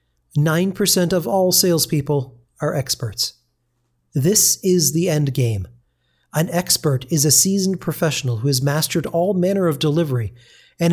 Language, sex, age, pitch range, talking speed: English, male, 40-59, 135-180 Hz, 130 wpm